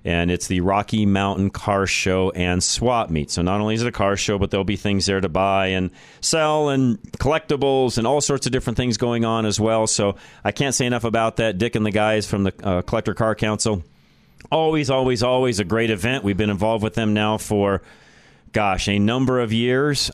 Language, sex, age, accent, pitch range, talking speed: English, male, 40-59, American, 100-125 Hz, 220 wpm